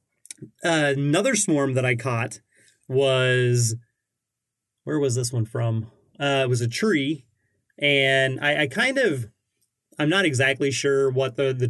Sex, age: male, 30-49